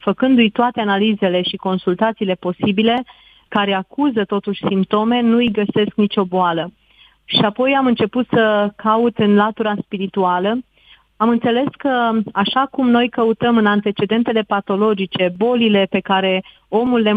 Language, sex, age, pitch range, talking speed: Romanian, female, 30-49, 200-235 Hz, 135 wpm